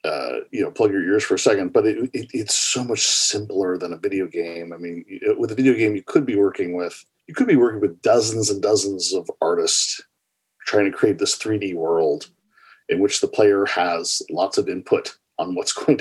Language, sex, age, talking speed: English, male, 40-59, 210 wpm